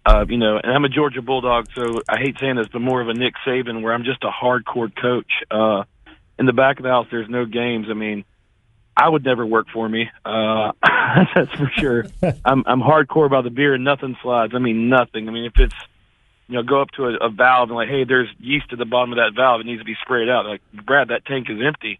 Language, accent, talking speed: English, American, 255 wpm